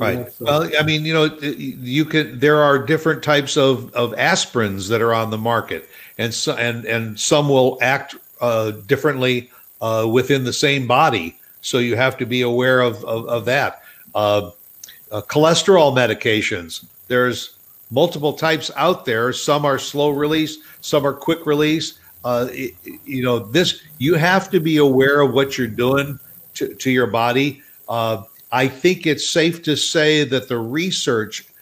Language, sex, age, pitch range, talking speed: English, male, 60-79, 115-150 Hz, 170 wpm